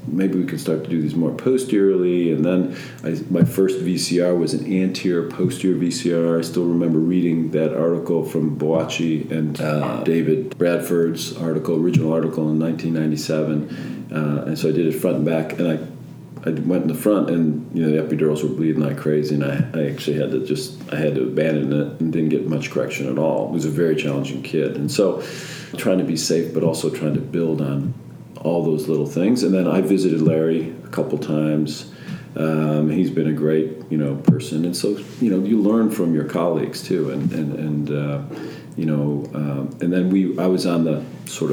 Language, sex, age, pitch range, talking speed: English, male, 40-59, 75-85 Hz, 205 wpm